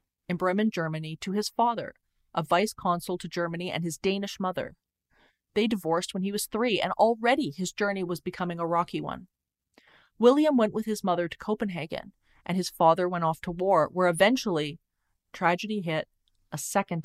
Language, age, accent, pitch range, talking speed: English, 30-49, American, 165-210 Hz, 175 wpm